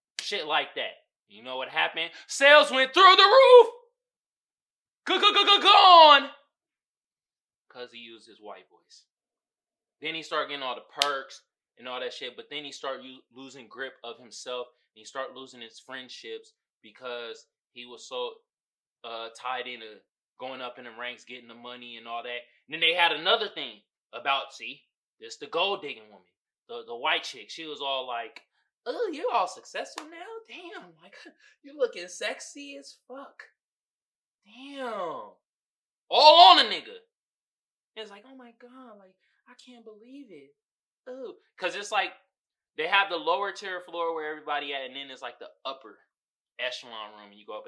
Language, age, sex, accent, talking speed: English, 20-39, male, American, 170 wpm